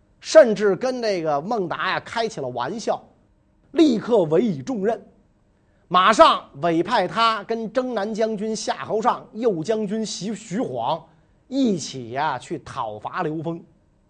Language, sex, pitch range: Chinese, male, 150-240 Hz